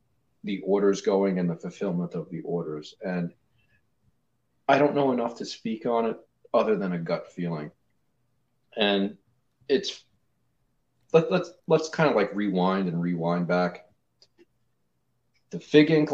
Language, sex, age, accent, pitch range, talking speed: English, male, 40-59, American, 90-120 Hz, 140 wpm